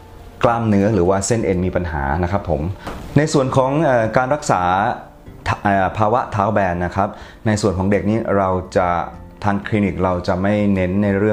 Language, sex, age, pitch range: Thai, male, 20-39, 85-105 Hz